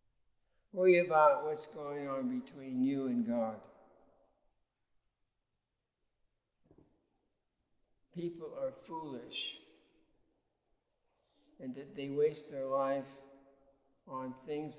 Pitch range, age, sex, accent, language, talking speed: 130-170 Hz, 60-79, male, American, English, 80 wpm